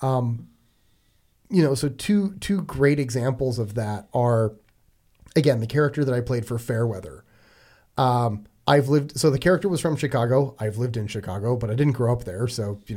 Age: 30-49